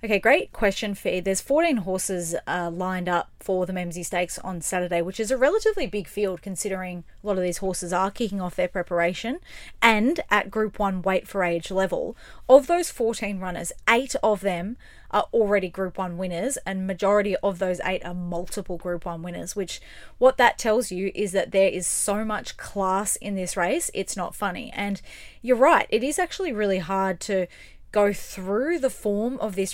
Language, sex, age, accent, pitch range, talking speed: English, female, 20-39, Australian, 185-215 Hz, 195 wpm